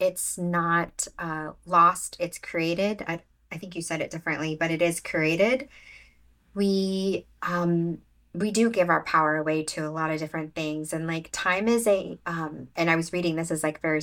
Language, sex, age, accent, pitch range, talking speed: English, female, 20-39, American, 155-180 Hz, 195 wpm